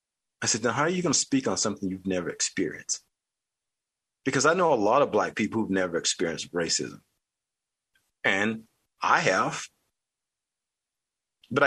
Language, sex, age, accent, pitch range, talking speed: English, male, 40-59, American, 95-120 Hz, 155 wpm